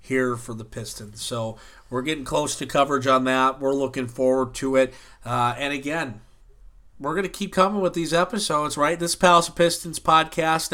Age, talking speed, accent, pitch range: 40-59, 195 wpm, American, 130-160 Hz